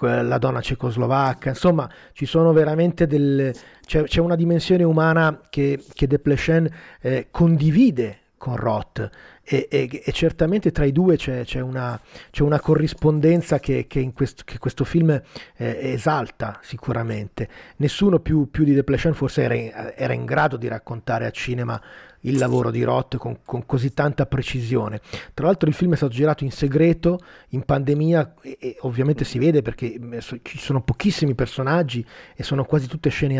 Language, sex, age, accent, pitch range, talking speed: Italian, male, 30-49, native, 120-150 Hz, 170 wpm